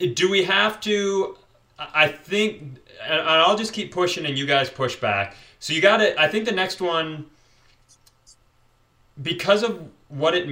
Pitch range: 130-170 Hz